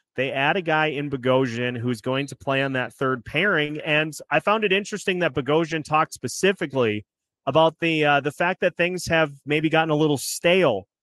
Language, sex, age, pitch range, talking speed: English, male, 30-49, 130-155 Hz, 195 wpm